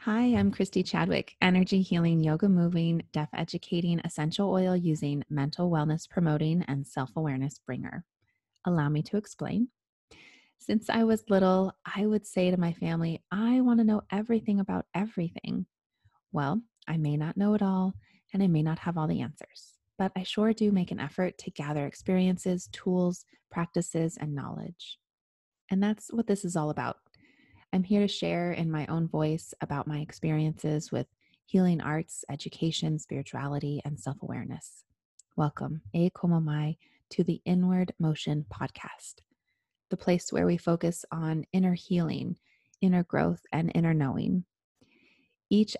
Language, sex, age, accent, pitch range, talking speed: English, female, 30-49, American, 155-190 Hz, 150 wpm